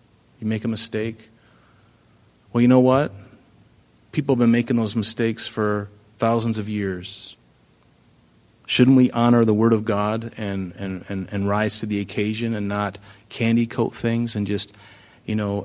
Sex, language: male, English